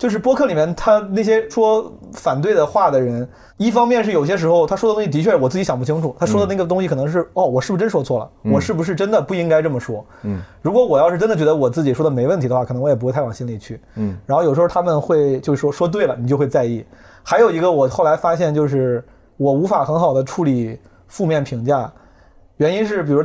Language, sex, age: Chinese, male, 30-49